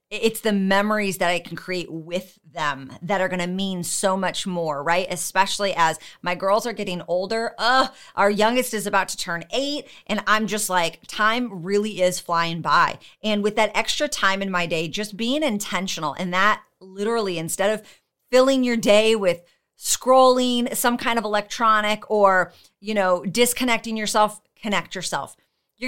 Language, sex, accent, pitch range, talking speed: English, female, American, 175-215 Hz, 175 wpm